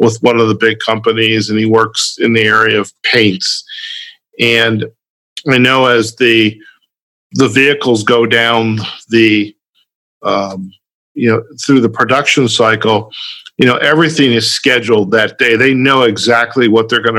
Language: English